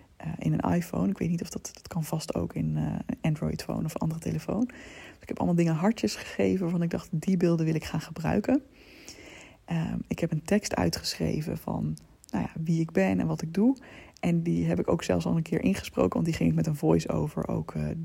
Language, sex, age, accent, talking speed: Dutch, female, 20-39, Dutch, 240 wpm